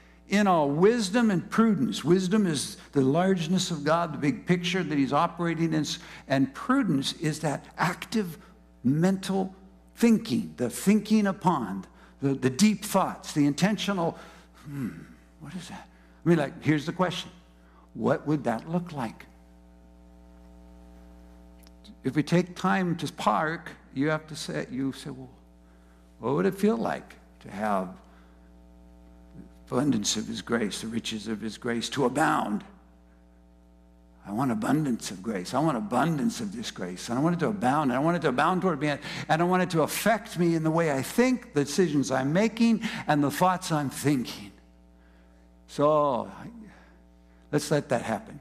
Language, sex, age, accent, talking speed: English, male, 60-79, American, 160 wpm